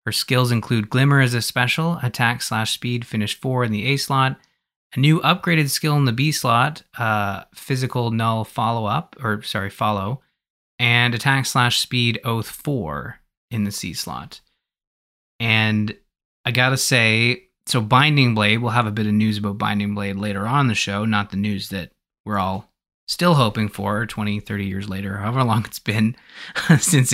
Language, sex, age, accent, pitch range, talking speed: English, male, 20-39, American, 105-130 Hz, 180 wpm